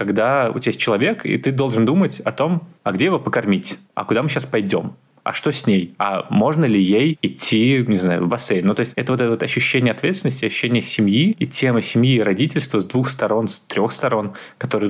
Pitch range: 105-130 Hz